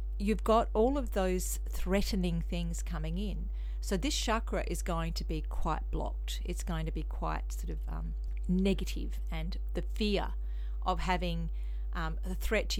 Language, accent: English, Australian